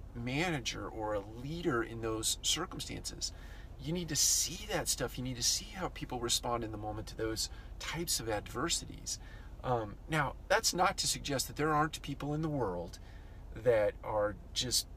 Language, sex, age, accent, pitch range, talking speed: English, male, 40-59, American, 95-135 Hz, 175 wpm